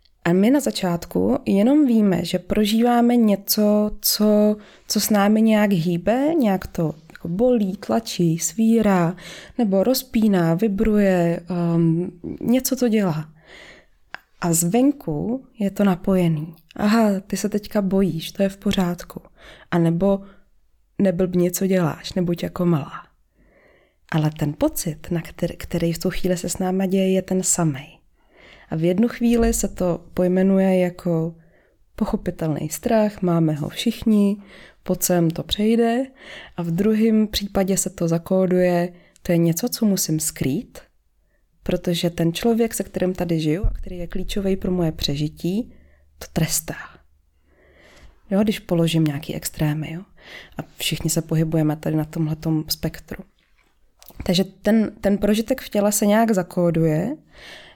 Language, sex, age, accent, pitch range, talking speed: Czech, female, 20-39, native, 170-210 Hz, 140 wpm